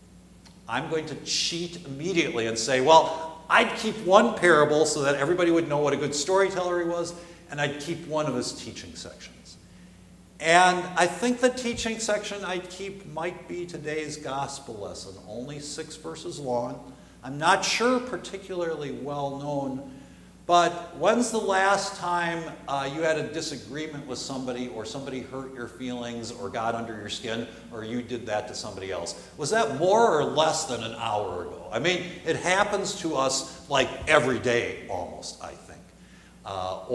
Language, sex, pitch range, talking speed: English, male, 120-175 Hz, 170 wpm